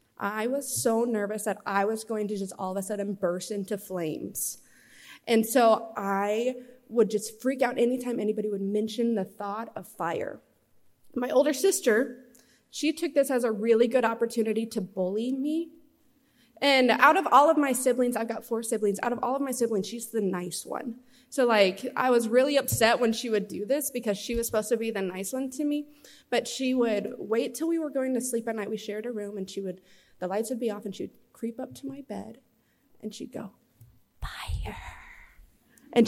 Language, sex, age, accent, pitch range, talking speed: English, female, 20-39, American, 215-265 Hz, 210 wpm